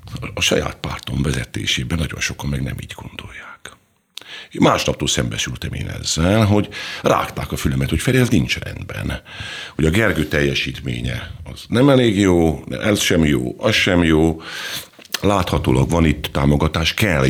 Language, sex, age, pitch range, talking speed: Hungarian, male, 50-69, 65-100 Hz, 145 wpm